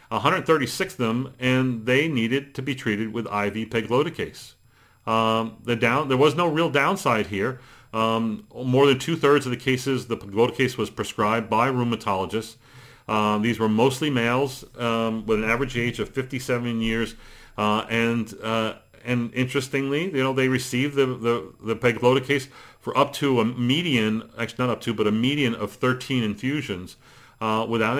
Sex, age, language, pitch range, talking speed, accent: male, 40-59, English, 110-130 Hz, 165 wpm, American